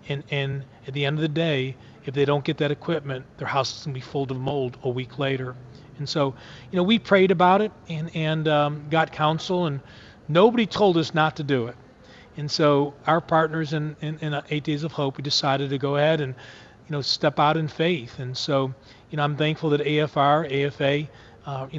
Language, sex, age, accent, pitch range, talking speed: English, male, 40-59, American, 135-160 Hz, 215 wpm